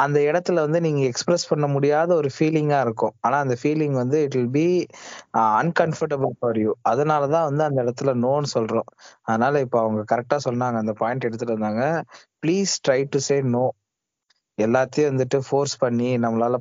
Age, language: 20-39, Tamil